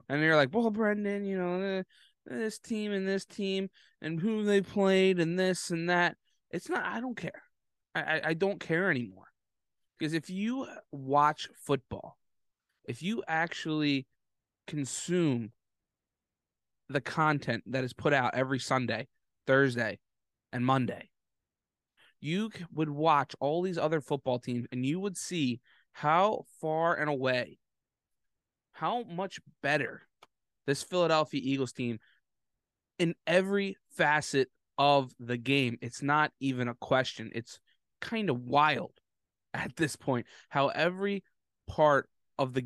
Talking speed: 135 wpm